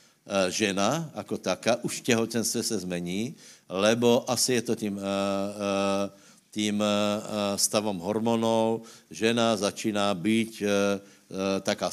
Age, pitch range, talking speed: 60-79, 100-120 Hz, 95 wpm